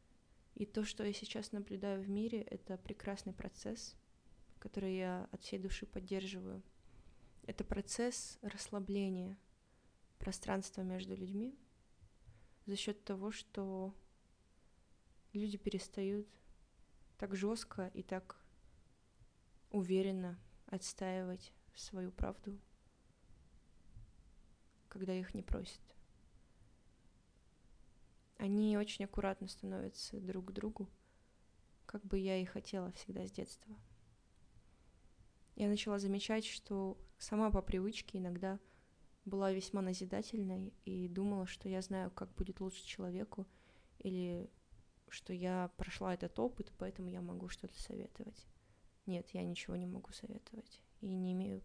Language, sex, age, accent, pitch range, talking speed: Russian, female, 20-39, native, 180-205 Hz, 110 wpm